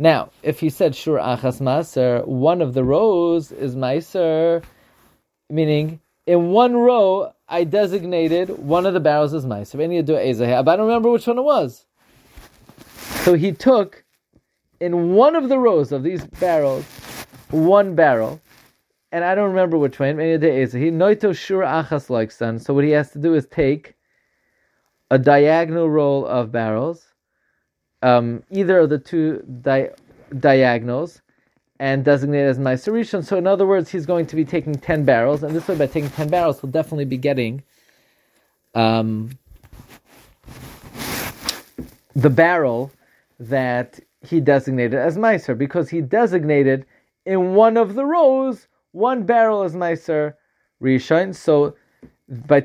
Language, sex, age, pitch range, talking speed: English, male, 30-49, 135-180 Hz, 140 wpm